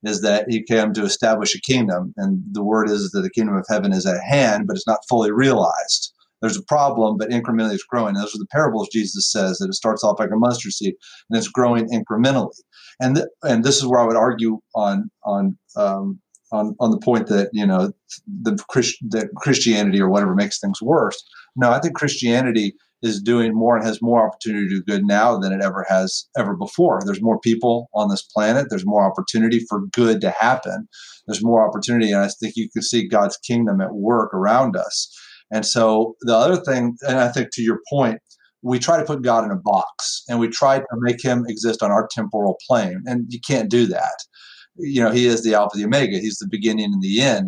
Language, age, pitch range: English, 40-59, 110-130 Hz